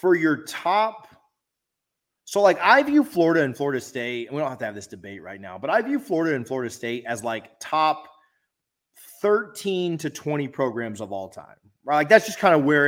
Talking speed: 210 wpm